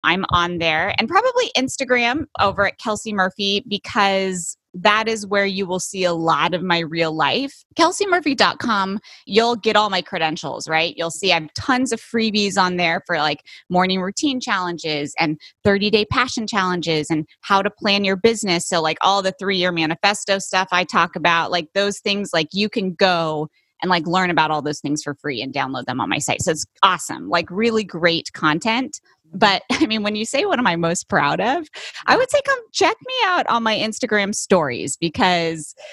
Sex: female